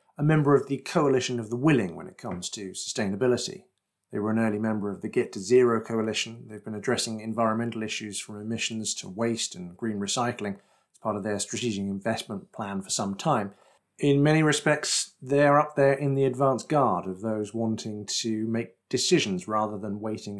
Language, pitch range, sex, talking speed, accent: English, 110-140 Hz, male, 190 wpm, British